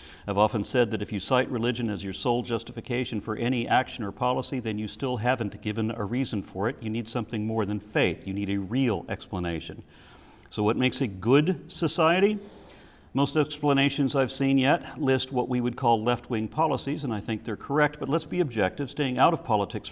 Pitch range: 105-135 Hz